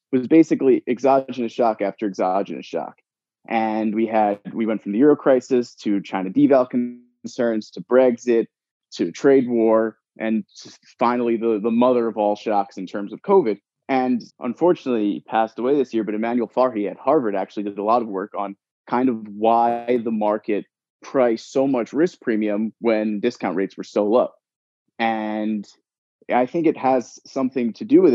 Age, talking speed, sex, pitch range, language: 20-39, 175 wpm, male, 110-125 Hz, English